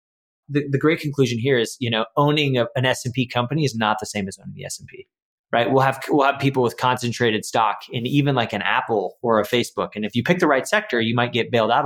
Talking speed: 275 wpm